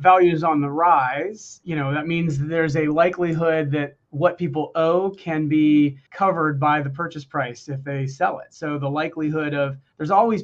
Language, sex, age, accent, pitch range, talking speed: English, male, 30-49, American, 145-165 Hz, 185 wpm